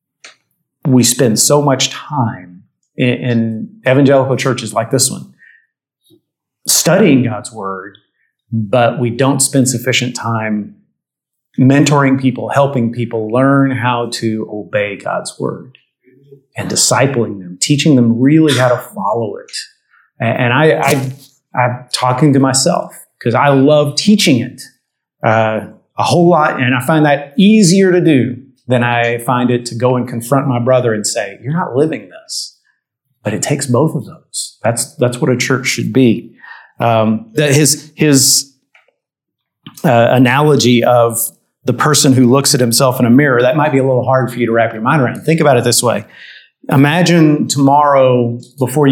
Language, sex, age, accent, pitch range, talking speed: English, male, 30-49, American, 120-140 Hz, 160 wpm